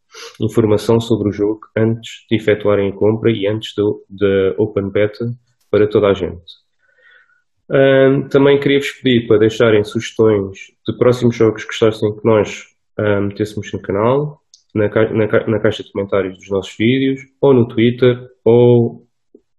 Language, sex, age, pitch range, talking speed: English, male, 20-39, 100-120 Hz, 145 wpm